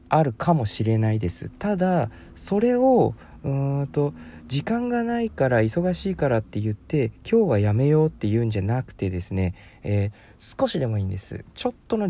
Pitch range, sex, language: 110-180 Hz, male, Japanese